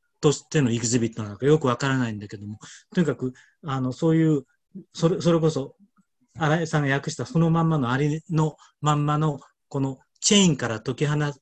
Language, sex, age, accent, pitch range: Japanese, male, 40-59, native, 125-175 Hz